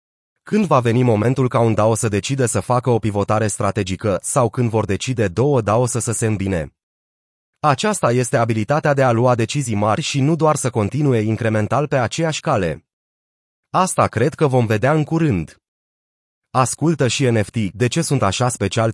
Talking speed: 175 wpm